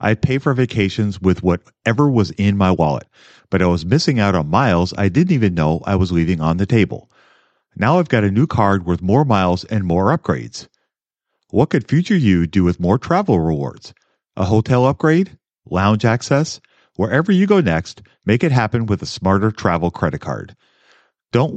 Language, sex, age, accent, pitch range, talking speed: English, male, 40-59, American, 95-120 Hz, 185 wpm